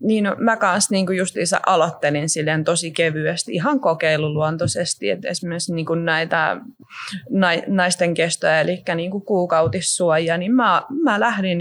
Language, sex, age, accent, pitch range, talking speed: Finnish, female, 20-39, native, 160-185 Hz, 115 wpm